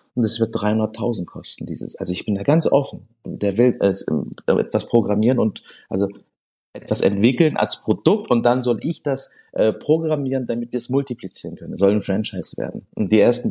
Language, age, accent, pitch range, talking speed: German, 40-59, German, 105-135 Hz, 190 wpm